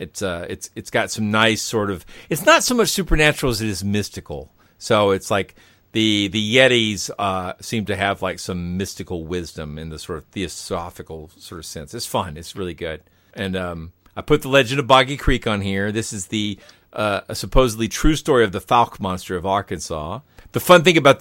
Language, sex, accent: English, male, American